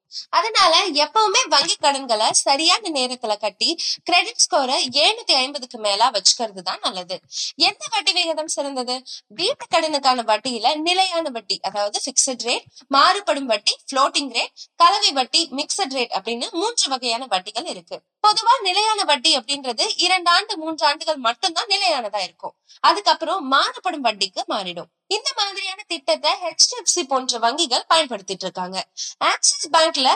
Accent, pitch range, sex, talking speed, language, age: native, 255-365 Hz, female, 130 wpm, Tamil, 20-39